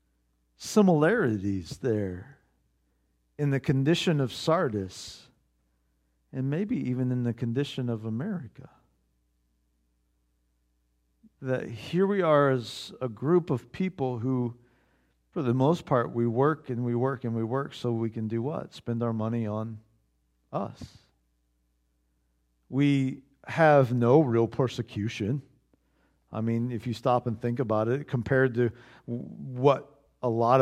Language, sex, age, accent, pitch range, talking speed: English, male, 50-69, American, 110-140 Hz, 130 wpm